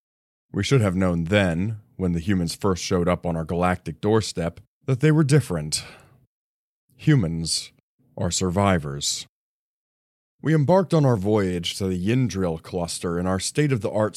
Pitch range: 90-115 Hz